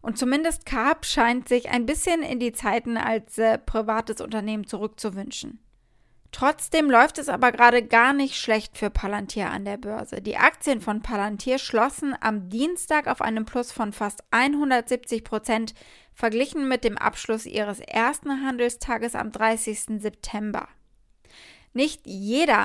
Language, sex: German, female